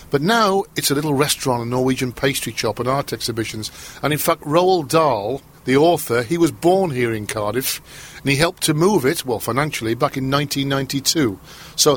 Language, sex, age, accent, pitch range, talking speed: English, male, 50-69, British, 125-155 Hz, 190 wpm